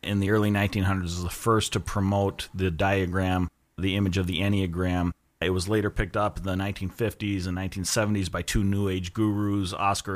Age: 30-49